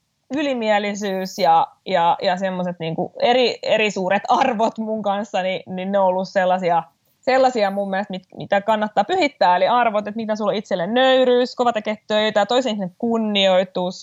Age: 20-39